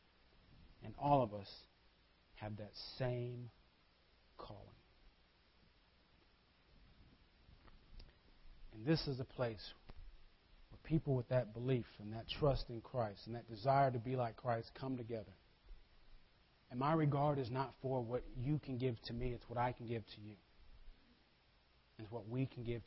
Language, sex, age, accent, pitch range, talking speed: English, male, 40-59, American, 110-145 Hz, 145 wpm